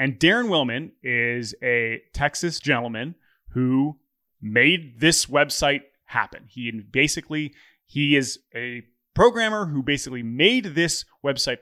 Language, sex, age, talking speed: English, male, 20-39, 120 wpm